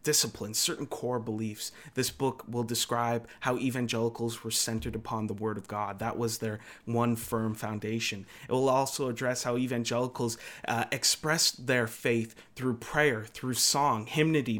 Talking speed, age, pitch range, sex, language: 155 wpm, 30-49, 110-135 Hz, male, English